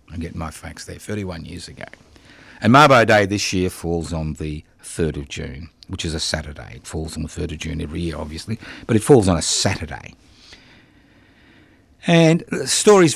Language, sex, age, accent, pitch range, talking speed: English, male, 50-69, Australian, 80-110 Hz, 190 wpm